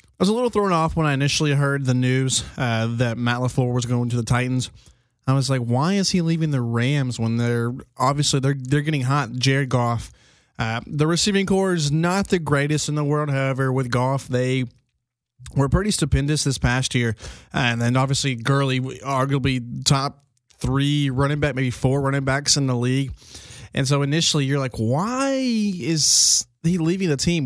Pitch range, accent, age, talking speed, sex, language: 125-145 Hz, American, 20-39, 190 wpm, male, English